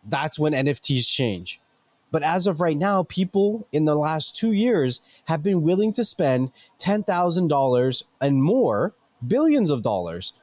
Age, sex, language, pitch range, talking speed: 20-39, male, English, 125-165 Hz, 160 wpm